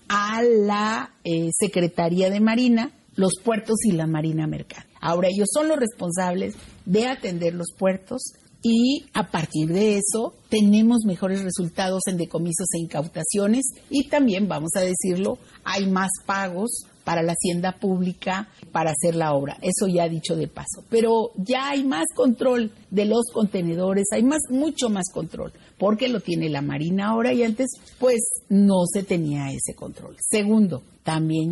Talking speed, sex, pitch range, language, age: 160 wpm, female, 170-230 Hz, Spanish, 50-69